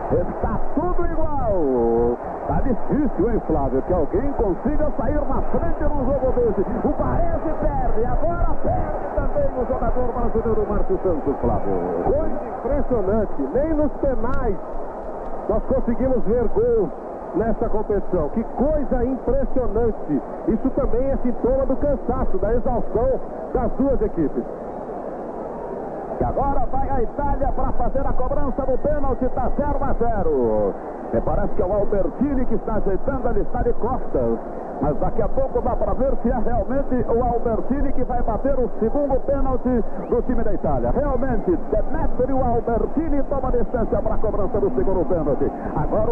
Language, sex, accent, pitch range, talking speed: English, male, Brazilian, 230-280 Hz, 155 wpm